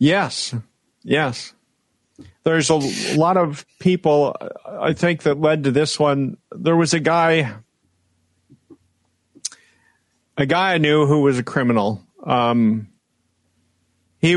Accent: American